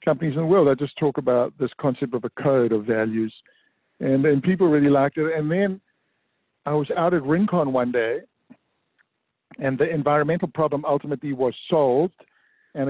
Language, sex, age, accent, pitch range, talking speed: English, male, 50-69, American, 135-160 Hz, 175 wpm